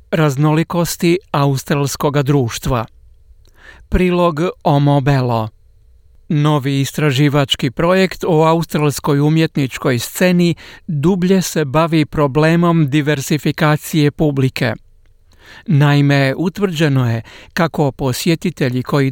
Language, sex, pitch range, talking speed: Croatian, male, 135-165 Hz, 80 wpm